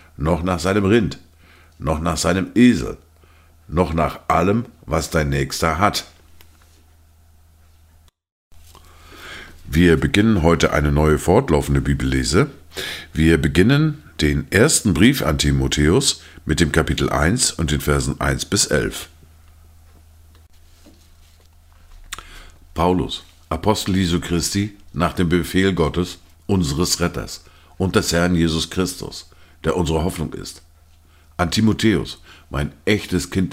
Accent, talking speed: German, 115 wpm